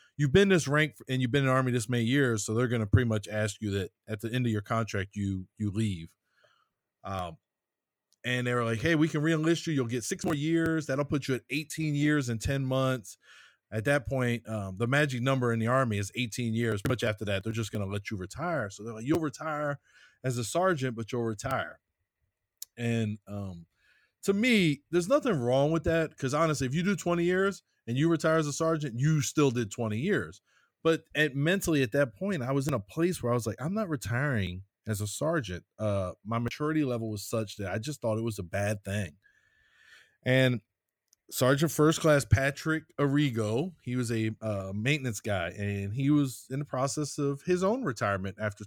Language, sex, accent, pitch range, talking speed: English, male, American, 110-150 Hz, 215 wpm